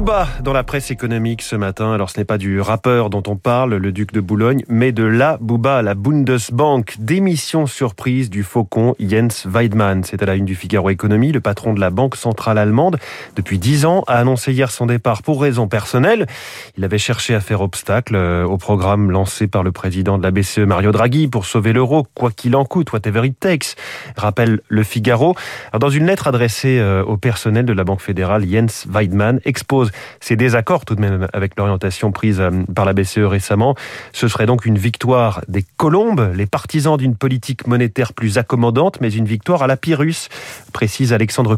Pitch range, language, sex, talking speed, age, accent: 100-130 Hz, French, male, 195 wpm, 30-49, French